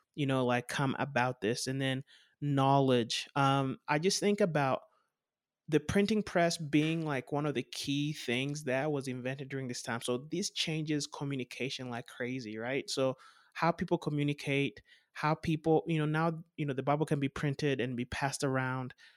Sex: male